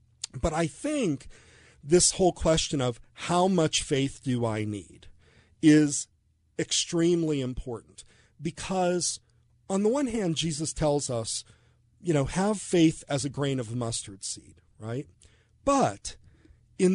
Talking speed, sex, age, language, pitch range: 130 wpm, male, 40-59, English, 115-175 Hz